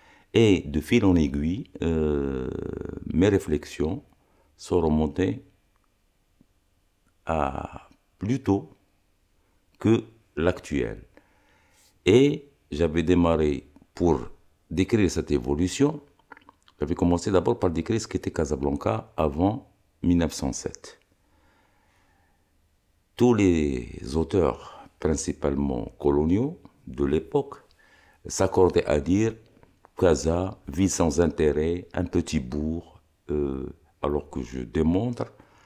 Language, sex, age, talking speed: French, male, 60-79, 90 wpm